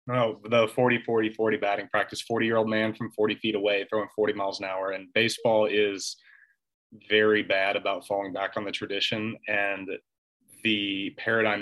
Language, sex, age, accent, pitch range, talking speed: English, male, 30-49, American, 100-110 Hz, 175 wpm